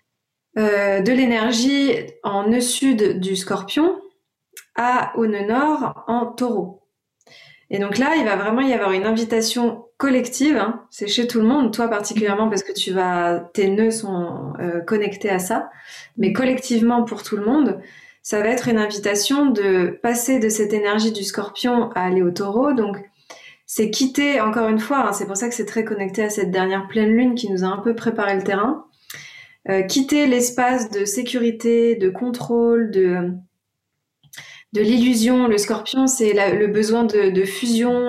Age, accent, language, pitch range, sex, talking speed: 20-39, French, French, 205-245 Hz, female, 175 wpm